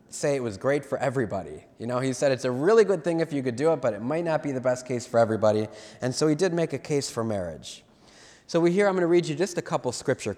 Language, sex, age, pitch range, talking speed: English, male, 20-39, 115-155 Hz, 295 wpm